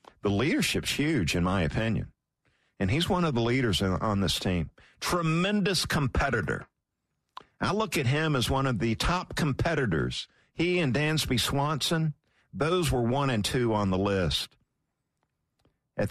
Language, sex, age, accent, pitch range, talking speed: English, male, 50-69, American, 105-170 Hz, 150 wpm